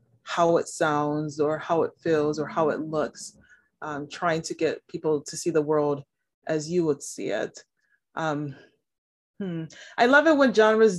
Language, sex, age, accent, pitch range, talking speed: English, female, 30-49, American, 150-180 Hz, 175 wpm